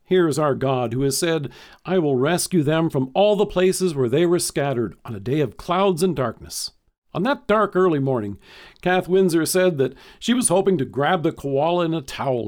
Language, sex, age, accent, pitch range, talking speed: English, male, 50-69, American, 130-185 Hz, 215 wpm